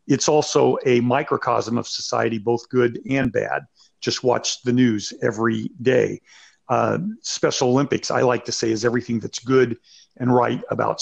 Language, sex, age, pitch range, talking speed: English, male, 50-69, 115-130 Hz, 165 wpm